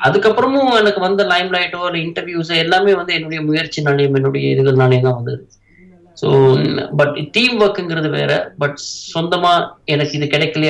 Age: 20-39